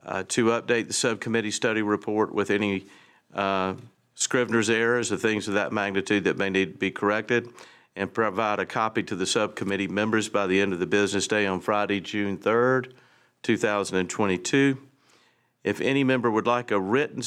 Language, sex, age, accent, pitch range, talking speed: English, male, 50-69, American, 95-115 Hz, 175 wpm